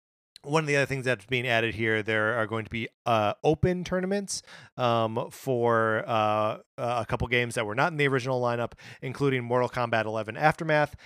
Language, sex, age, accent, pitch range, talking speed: English, male, 30-49, American, 110-140 Hz, 195 wpm